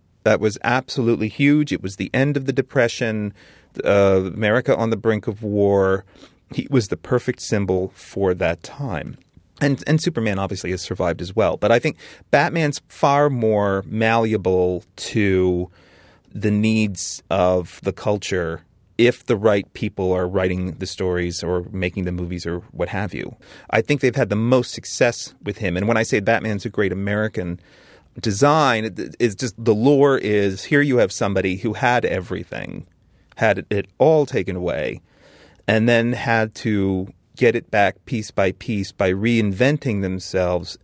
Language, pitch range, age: English, 95-115 Hz, 30-49